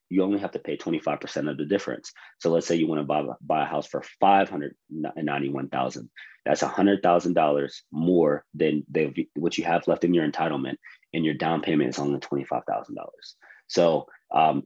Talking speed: 180 wpm